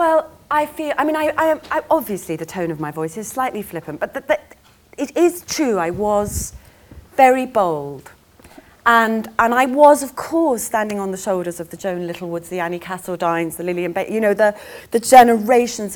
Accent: British